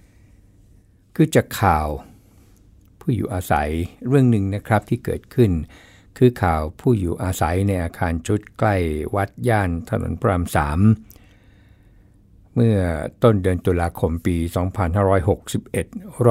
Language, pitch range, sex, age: Thai, 90-105 Hz, male, 60-79